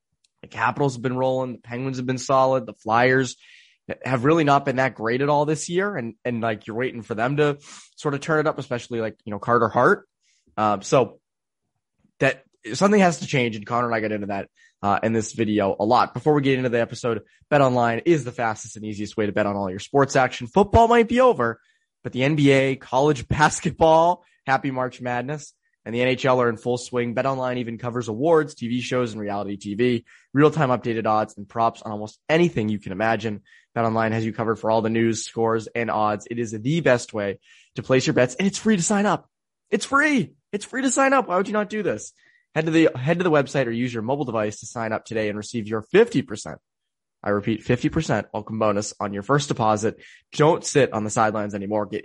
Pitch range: 110-145 Hz